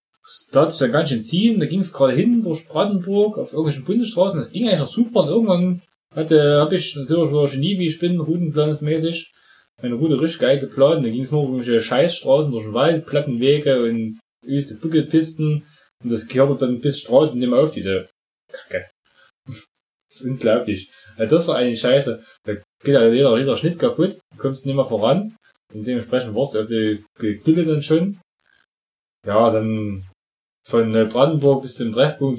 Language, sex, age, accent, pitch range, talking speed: German, male, 10-29, German, 115-165 Hz, 180 wpm